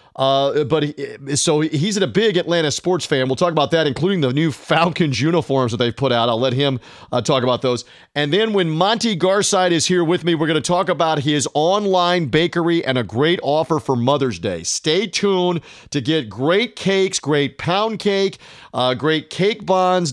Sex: male